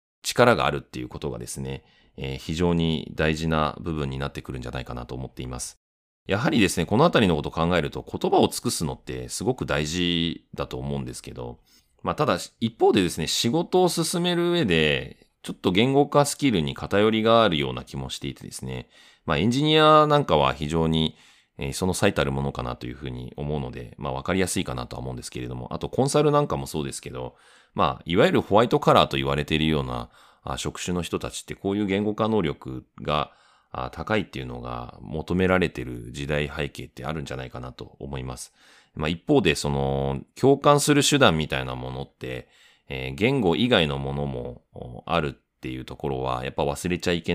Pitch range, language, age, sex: 65-90 Hz, Japanese, 30-49, male